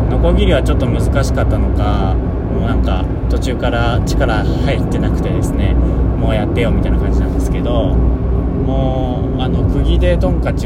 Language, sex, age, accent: Japanese, male, 20-39, native